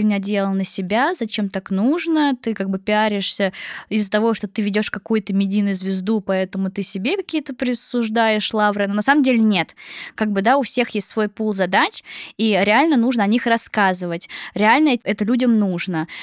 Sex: female